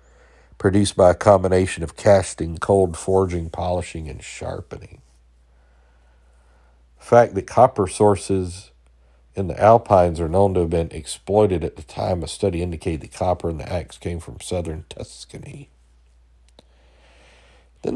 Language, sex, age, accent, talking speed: English, male, 60-79, American, 135 wpm